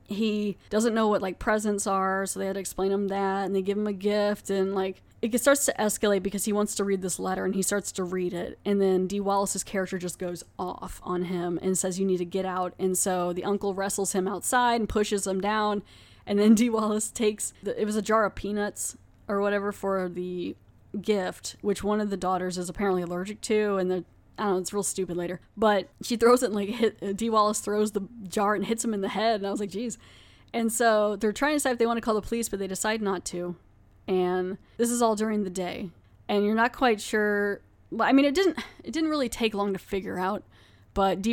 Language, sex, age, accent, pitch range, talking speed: English, female, 20-39, American, 185-215 Hz, 245 wpm